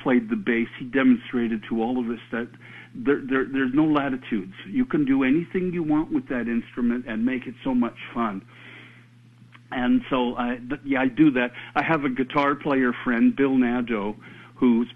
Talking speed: 175 wpm